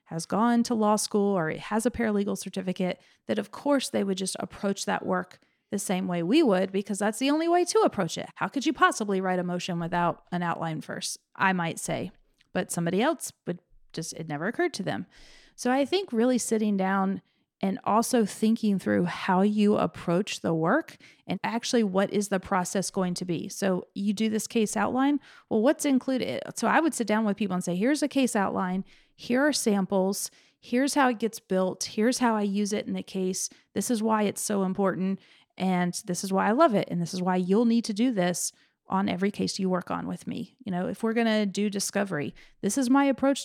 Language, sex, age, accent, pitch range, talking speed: English, female, 30-49, American, 185-230 Hz, 220 wpm